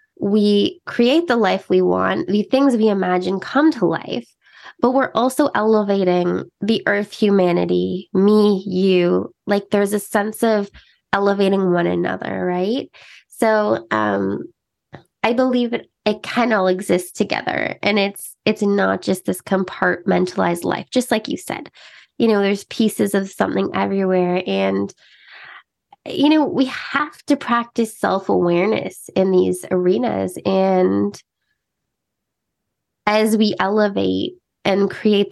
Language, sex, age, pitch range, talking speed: English, female, 20-39, 180-220 Hz, 130 wpm